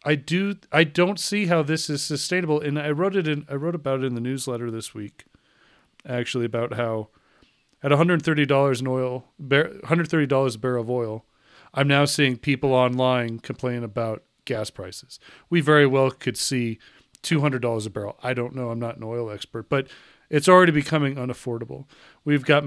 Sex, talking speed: male, 200 wpm